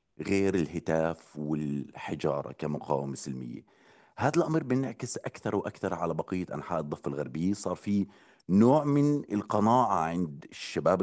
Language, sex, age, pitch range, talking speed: Arabic, male, 30-49, 80-115 Hz, 120 wpm